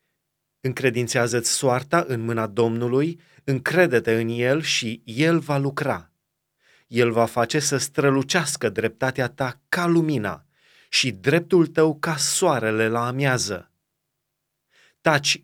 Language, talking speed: Romanian, 115 wpm